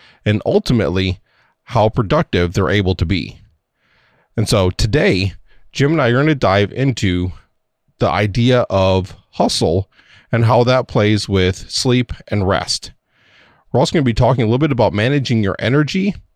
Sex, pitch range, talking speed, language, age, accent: male, 95-125 Hz, 160 wpm, English, 30-49, American